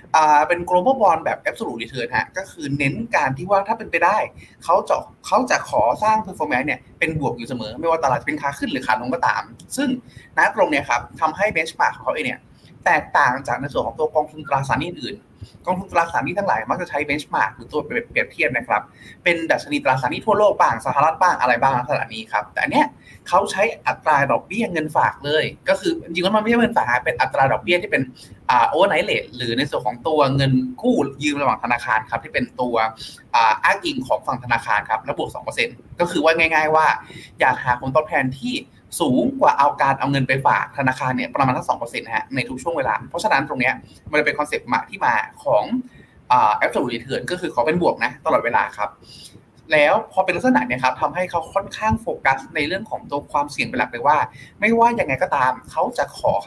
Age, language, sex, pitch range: 20-39, Thai, male, 140-215 Hz